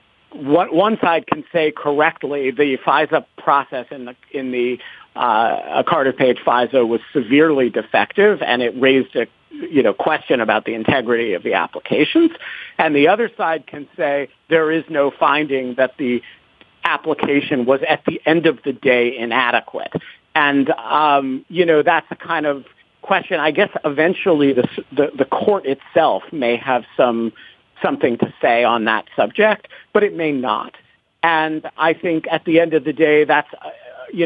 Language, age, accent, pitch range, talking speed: English, 50-69, American, 125-160 Hz, 170 wpm